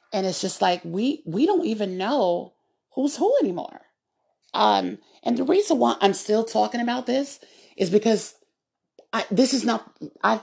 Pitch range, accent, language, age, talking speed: 185-240 Hz, American, English, 40-59, 165 wpm